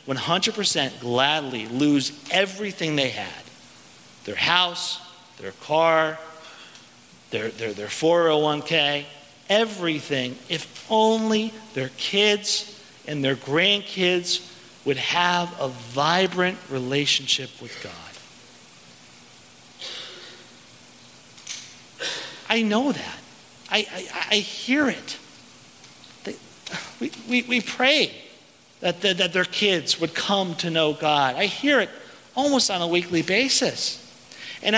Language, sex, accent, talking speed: English, male, American, 105 wpm